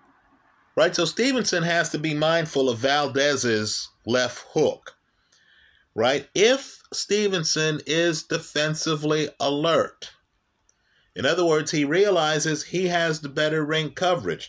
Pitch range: 150-195 Hz